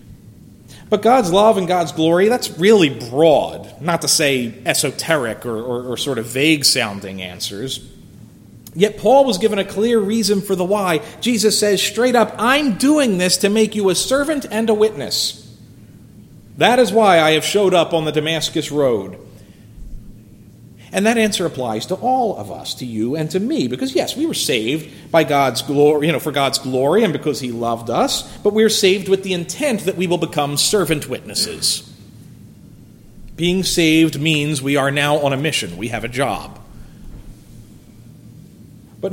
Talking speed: 175 wpm